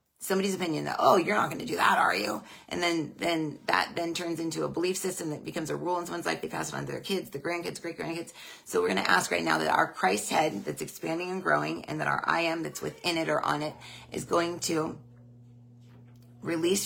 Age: 30-49